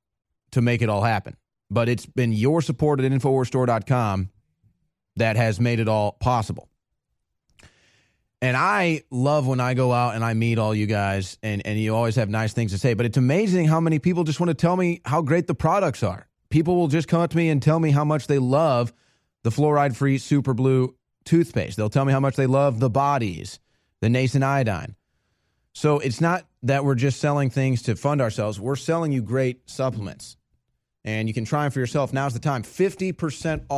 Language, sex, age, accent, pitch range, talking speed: English, male, 30-49, American, 110-135 Hz, 205 wpm